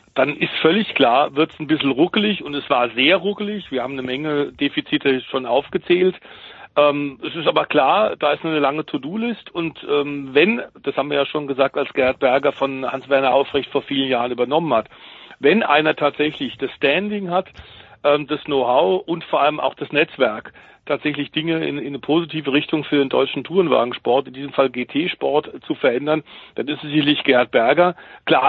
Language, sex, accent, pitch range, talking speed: German, male, German, 140-170 Hz, 190 wpm